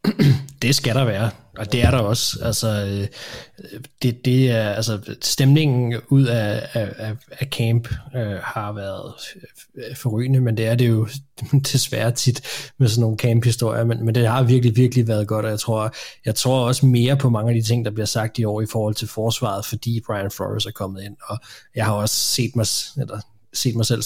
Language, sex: Danish, male